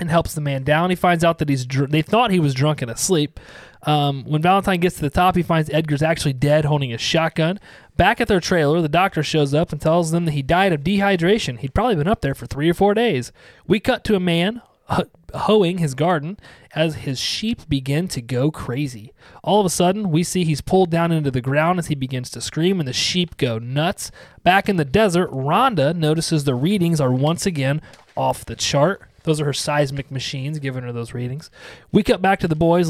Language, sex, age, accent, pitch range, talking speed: English, male, 30-49, American, 140-175 Hz, 230 wpm